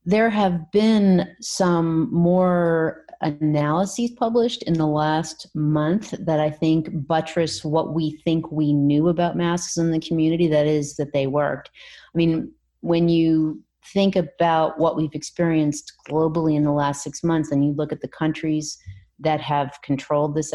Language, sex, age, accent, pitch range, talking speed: English, female, 30-49, American, 150-175 Hz, 160 wpm